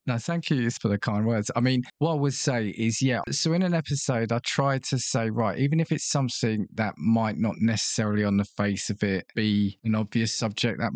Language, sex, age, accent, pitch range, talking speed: English, male, 20-39, British, 100-120 Hz, 230 wpm